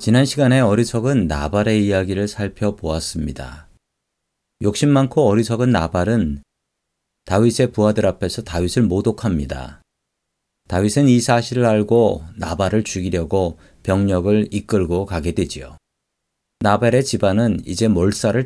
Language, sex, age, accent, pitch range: Korean, male, 40-59, native, 95-130 Hz